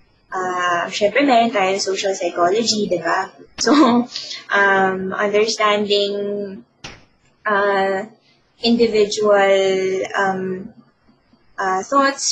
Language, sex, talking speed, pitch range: Filipino, female, 75 wpm, 190-230 Hz